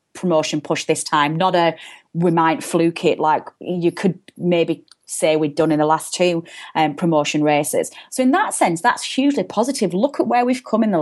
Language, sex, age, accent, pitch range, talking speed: English, female, 30-49, British, 165-230 Hz, 205 wpm